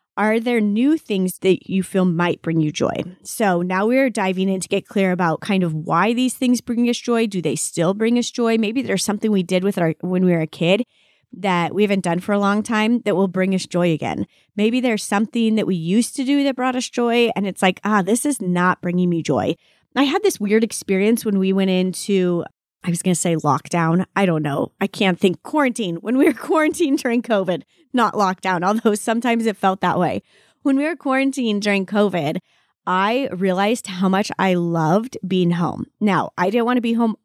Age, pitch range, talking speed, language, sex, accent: 30-49, 185-230 Hz, 225 wpm, English, female, American